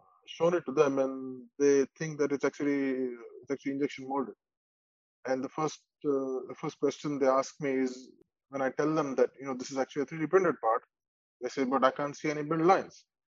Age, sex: 20-39, male